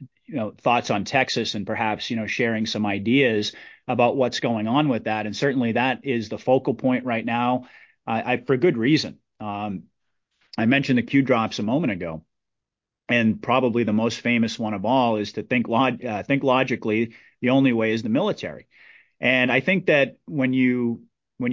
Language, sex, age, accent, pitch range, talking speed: English, male, 30-49, American, 110-130 Hz, 190 wpm